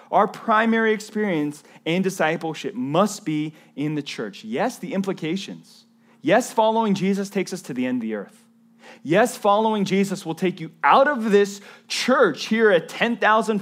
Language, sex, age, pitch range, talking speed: English, male, 30-49, 155-220 Hz, 165 wpm